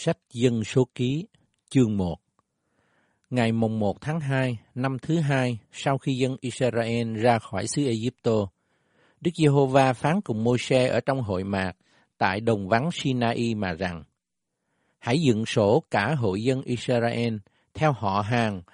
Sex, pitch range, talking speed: male, 110-140 Hz, 150 wpm